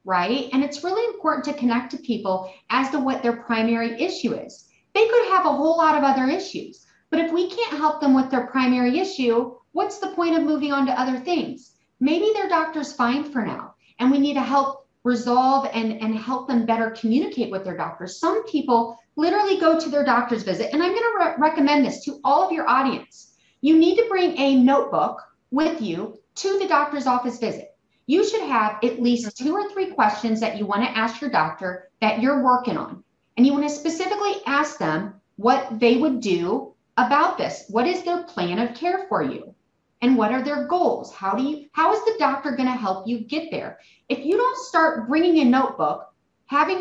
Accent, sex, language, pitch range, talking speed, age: American, female, English, 240-320 Hz, 210 wpm, 40-59